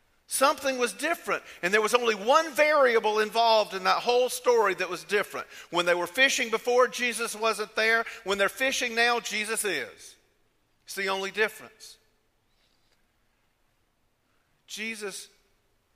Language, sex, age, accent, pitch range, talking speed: English, male, 50-69, American, 130-205 Hz, 135 wpm